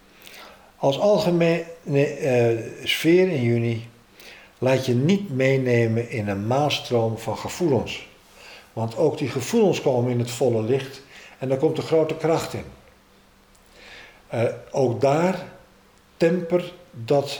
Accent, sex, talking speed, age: Dutch, male, 120 wpm, 50-69